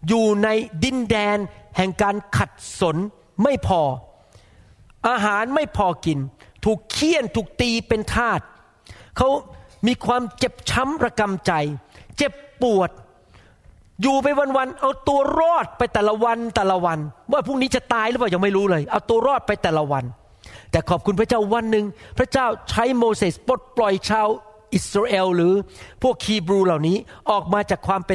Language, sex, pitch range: Thai, male, 175-240 Hz